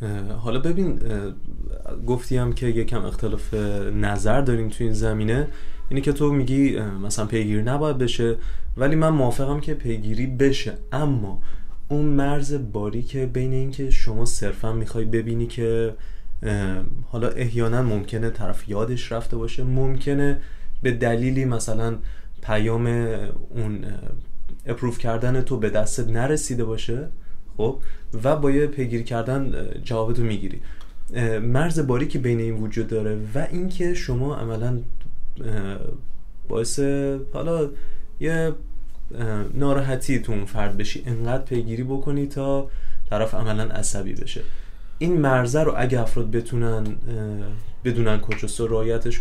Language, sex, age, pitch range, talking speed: Persian, male, 20-39, 110-135 Hz, 125 wpm